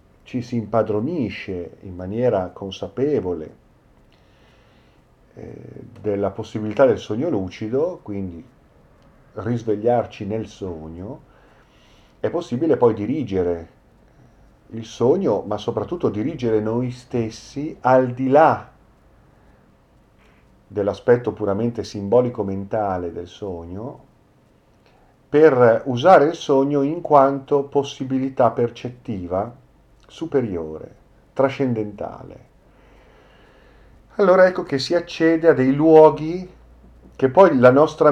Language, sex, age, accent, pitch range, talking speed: Italian, male, 40-59, native, 105-135 Hz, 90 wpm